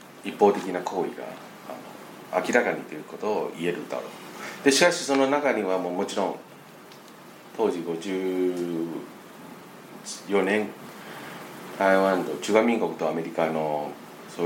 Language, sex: Japanese, male